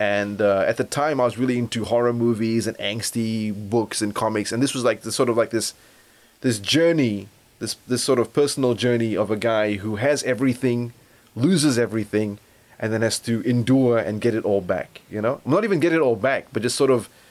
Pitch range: 110-135 Hz